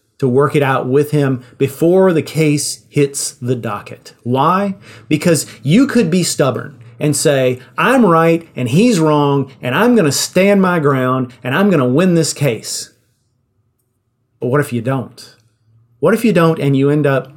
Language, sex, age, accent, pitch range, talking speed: English, male, 40-59, American, 120-150 Hz, 175 wpm